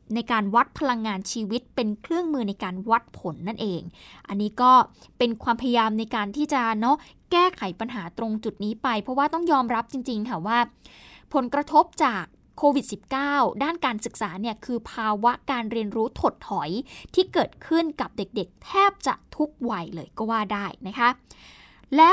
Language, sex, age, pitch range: Thai, female, 20-39, 220-285 Hz